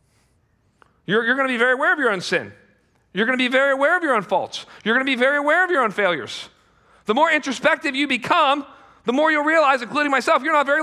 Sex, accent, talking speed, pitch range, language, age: male, American, 235 wpm, 165-275 Hz, English, 40-59